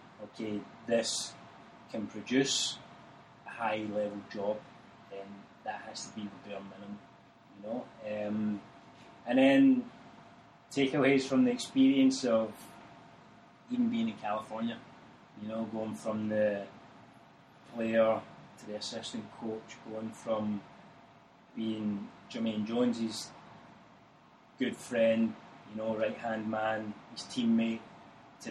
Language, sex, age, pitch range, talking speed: English, male, 20-39, 105-115 Hz, 115 wpm